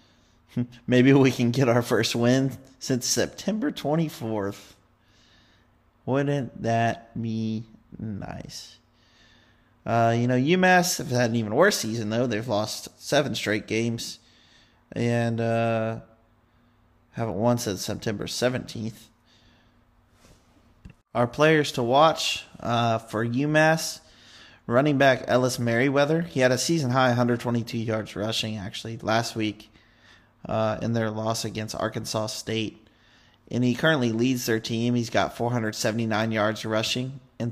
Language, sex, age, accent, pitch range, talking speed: English, male, 30-49, American, 110-130 Hz, 125 wpm